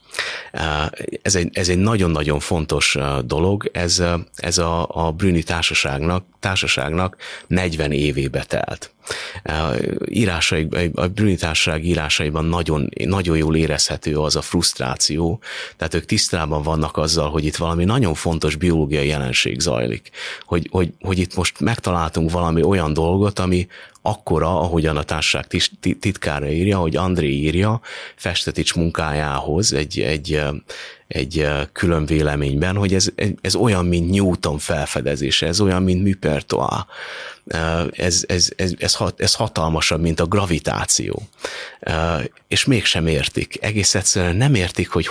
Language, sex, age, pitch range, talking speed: Hungarian, male, 30-49, 75-95 Hz, 125 wpm